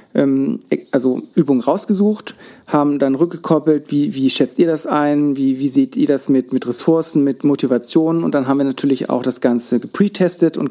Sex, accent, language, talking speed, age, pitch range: male, German, German, 180 wpm, 40-59, 130-150 Hz